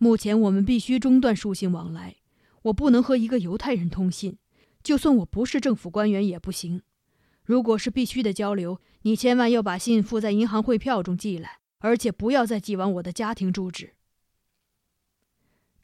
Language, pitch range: Chinese, 195-245 Hz